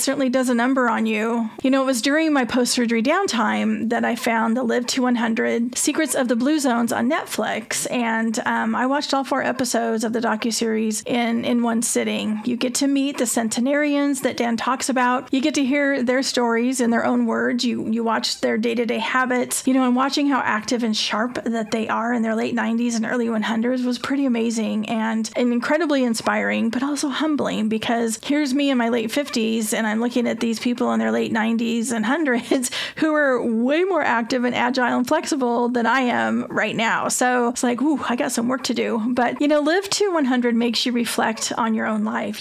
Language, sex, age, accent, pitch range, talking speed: English, female, 30-49, American, 230-270 Hz, 215 wpm